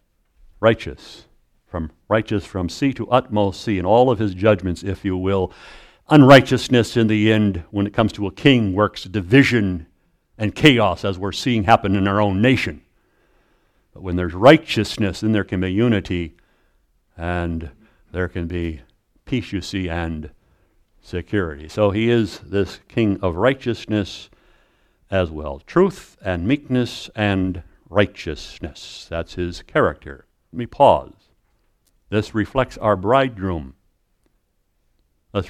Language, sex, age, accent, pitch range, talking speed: English, male, 60-79, American, 90-110 Hz, 135 wpm